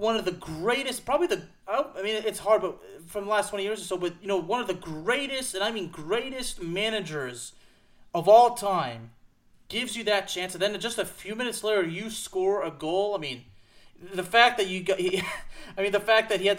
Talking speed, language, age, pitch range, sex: 205 wpm, English, 30-49, 155-200 Hz, male